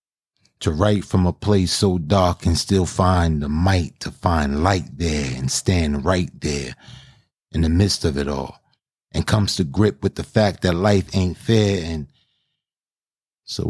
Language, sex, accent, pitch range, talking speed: English, male, American, 80-100 Hz, 170 wpm